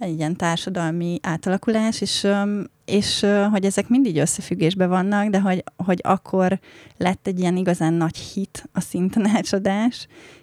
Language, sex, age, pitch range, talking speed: Hungarian, female, 30-49, 165-200 Hz, 140 wpm